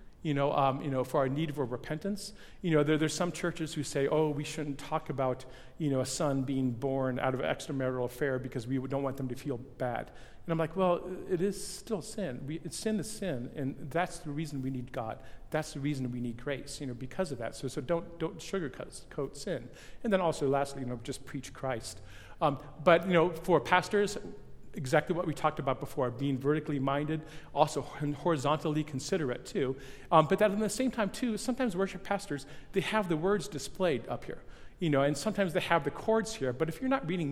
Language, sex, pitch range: English, male, 135-180 Hz